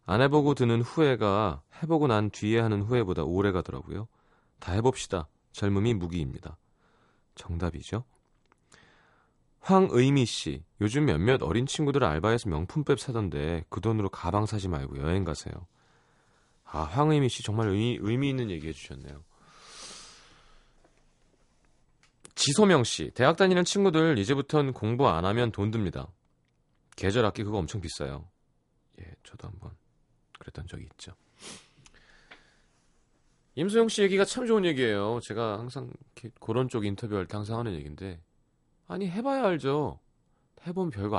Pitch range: 90-145 Hz